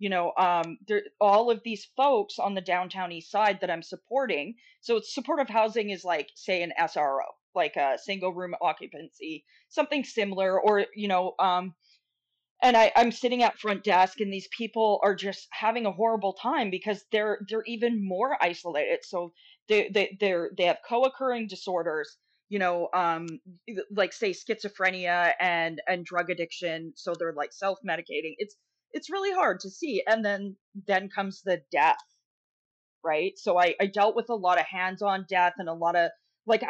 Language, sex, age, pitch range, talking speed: English, female, 20-39, 180-225 Hz, 180 wpm